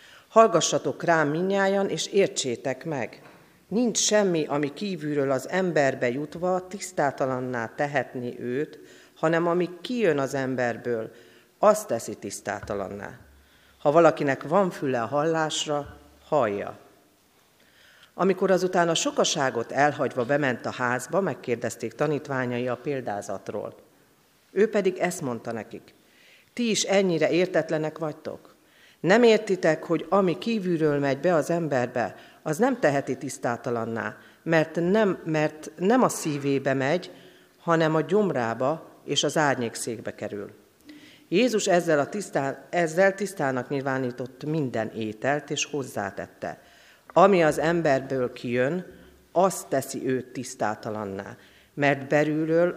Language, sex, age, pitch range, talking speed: Hungarian, female, 40-59, 125-170 Hz, 115 wpm